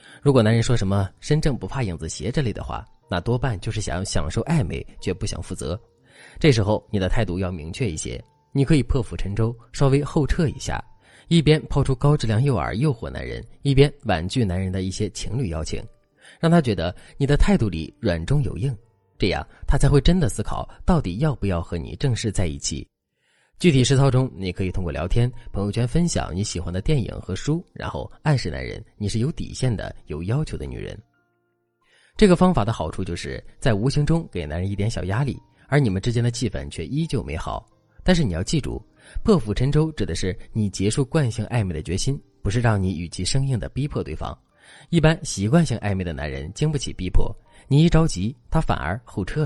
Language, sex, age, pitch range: Chinese, male, 20-39, 95-140 Hz